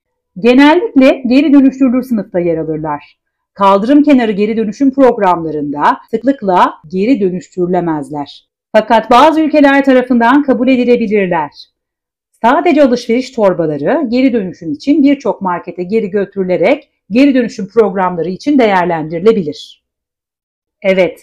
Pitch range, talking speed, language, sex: 175-250 Hz, 100 wpm, Turkish, female